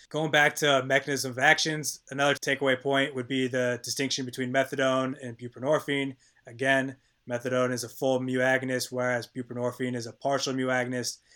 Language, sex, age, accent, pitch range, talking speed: English, male, 20-39, American, 125-135 Hz, 165 wpm